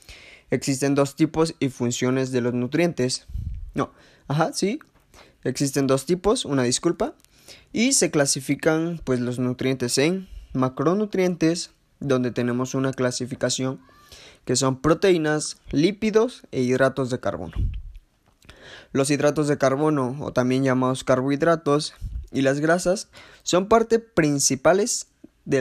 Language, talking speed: Spanish, 120 wpm